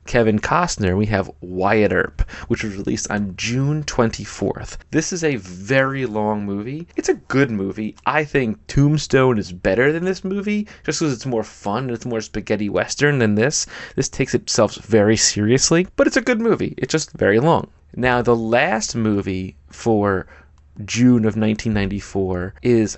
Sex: male